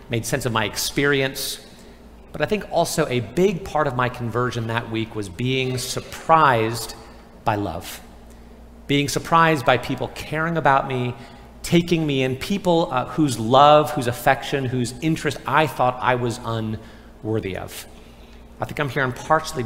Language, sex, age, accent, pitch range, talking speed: English, male, 40-59, American, 115-150 Hz, 155 wpm